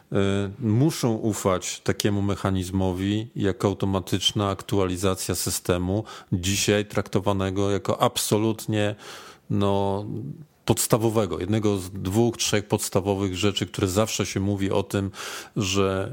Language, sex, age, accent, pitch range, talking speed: Polish, male, 40-59, native, 95-110 Hz, 100 wpm